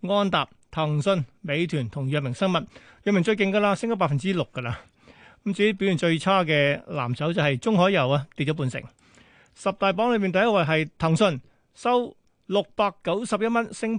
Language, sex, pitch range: Chinese, male, 155-200 Hz